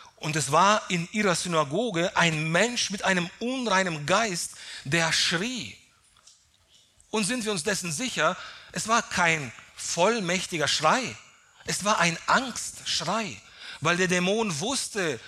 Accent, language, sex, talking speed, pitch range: German, German, male, 130 wpm, 115-170 Hz